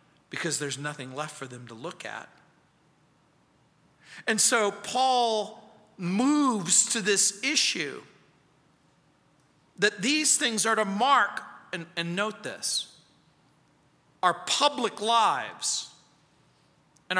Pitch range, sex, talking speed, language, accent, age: 155-235 Hz, male, 105 wpm, English, American, 50-69